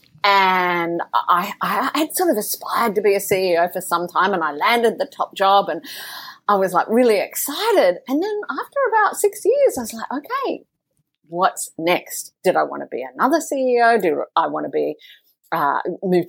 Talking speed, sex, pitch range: 190 wpm, female, 175-285 Hz